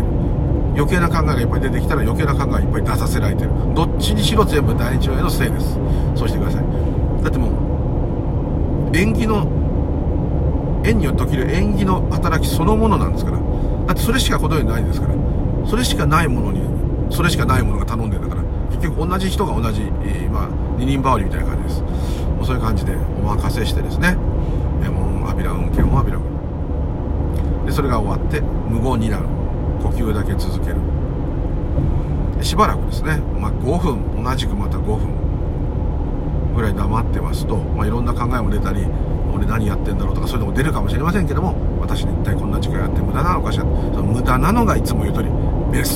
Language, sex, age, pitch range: Japanese, male, 40-59, 75-100 Hz